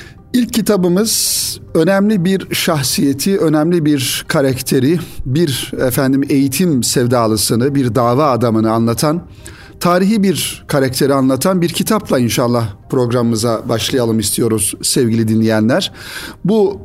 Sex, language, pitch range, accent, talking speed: male, Turkish, 120-165 Hz, native, 105 wpm